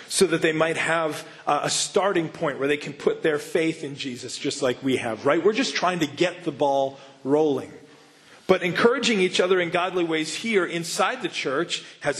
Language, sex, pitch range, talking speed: English, male, 150-185 Hz, 200 wpm